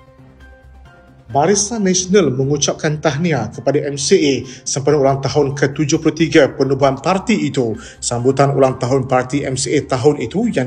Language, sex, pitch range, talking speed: Malay, male, 135-180 Hz, 120 wpm